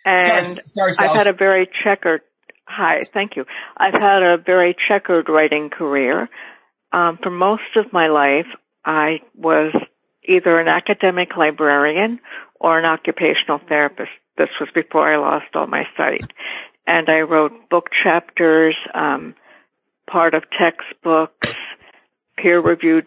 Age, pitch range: 60-79, 155-175 Hz